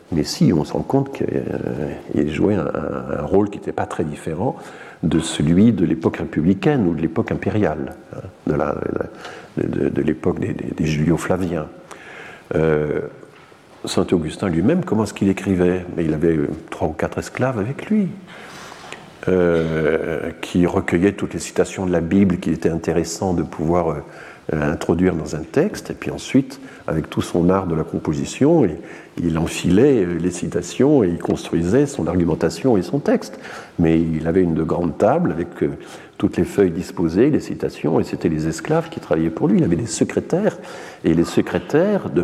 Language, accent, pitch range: French, French, 80-110 Hz